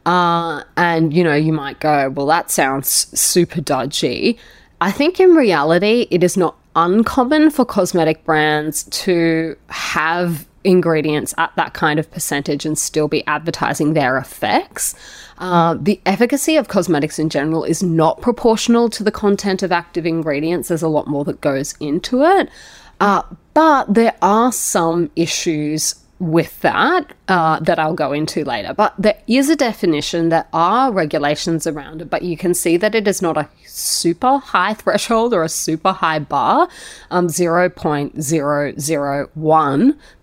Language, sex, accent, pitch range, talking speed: English, female, Australian, 155-195 Hz, 155 wpm